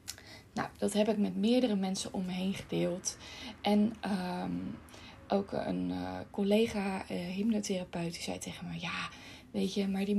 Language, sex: Dutch, female